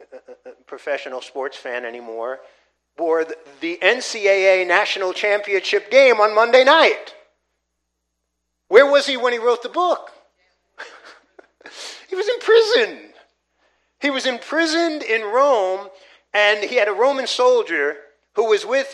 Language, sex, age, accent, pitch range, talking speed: English, male, 50-69, American, 160-270 Hz, 125 wpm